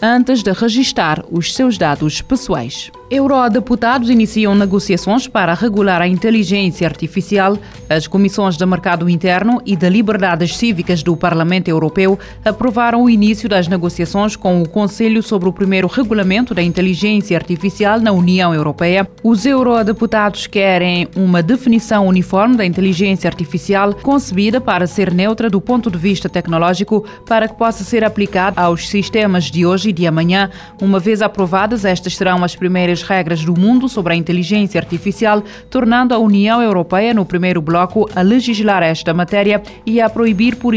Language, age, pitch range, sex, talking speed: Portuguese, 20-39, 180-220 Hz, female, 150 wpm